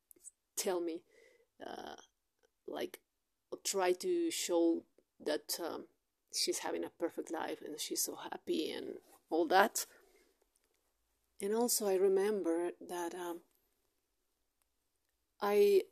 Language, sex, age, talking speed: English, female, 30-49, 105 wpm